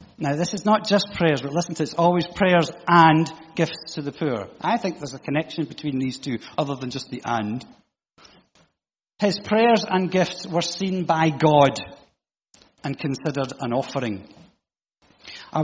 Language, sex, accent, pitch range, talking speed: English, male, British, 125-165 Hz, 170 wpm